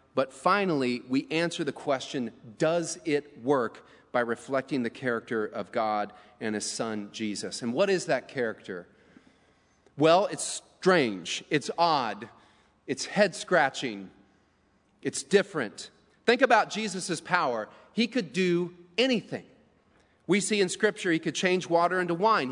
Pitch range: 160-220 Hz